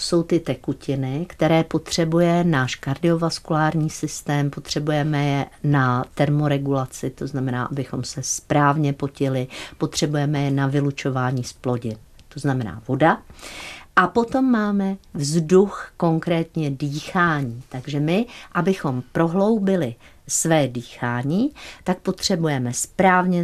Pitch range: 135-165 Hz